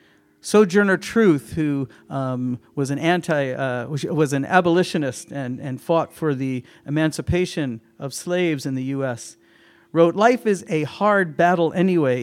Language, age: German, 50-69